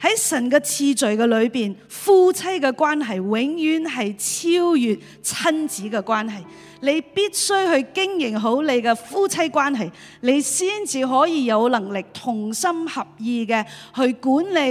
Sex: female